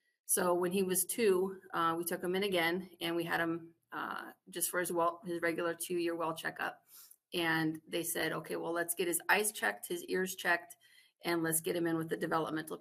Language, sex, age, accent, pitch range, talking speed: English, female, 30-49, American, 170-195 Hz, 215 wpm